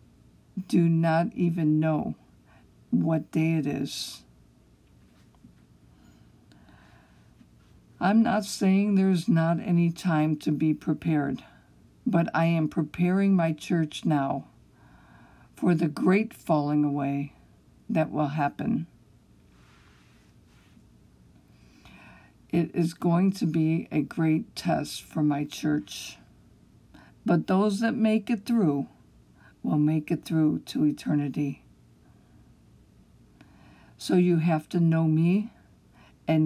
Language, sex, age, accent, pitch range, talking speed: English, female, 60-79, American, 145-175 Hz, 105 wpm